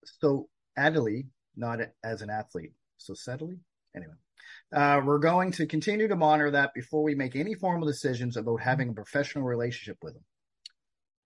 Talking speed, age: 160 wpm, 40-59